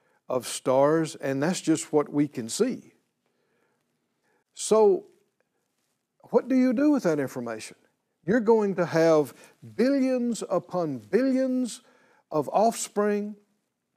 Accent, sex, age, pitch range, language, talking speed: American, male, 60-79, 155-240 Hz, English, 110 wpm